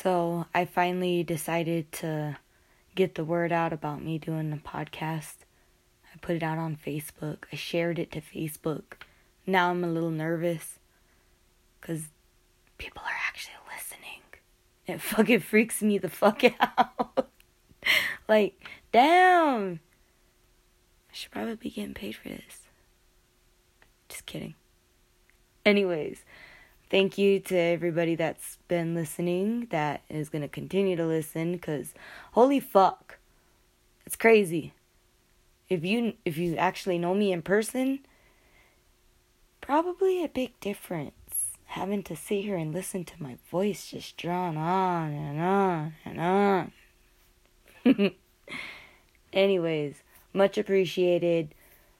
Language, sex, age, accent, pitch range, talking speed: English, female, 20-39, American, 160-195 Hz, 120 wpm